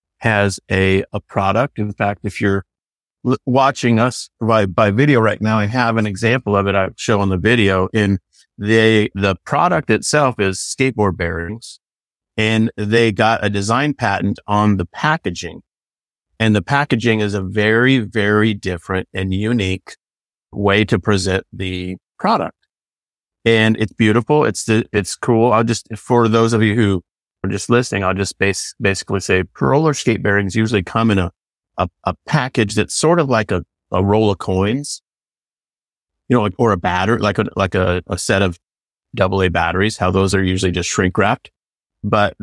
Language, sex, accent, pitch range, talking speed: English, male, American, 95-115 Hz, 170 wpm